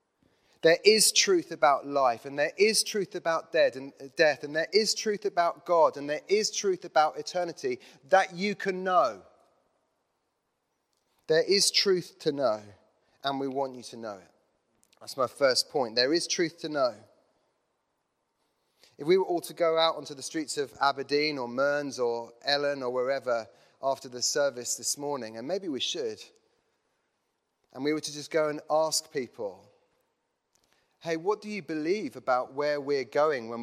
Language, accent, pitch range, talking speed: English, British, 135-180 Hz, 170 wpm